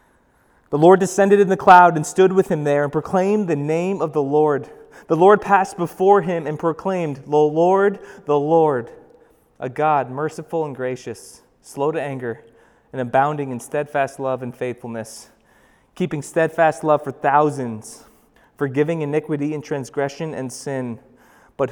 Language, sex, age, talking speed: English, male, 30-49, 155 wpm